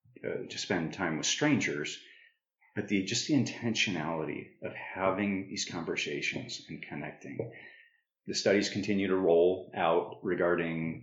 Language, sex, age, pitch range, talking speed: English, male, 40-59, 95-130 Hz, 125 wpm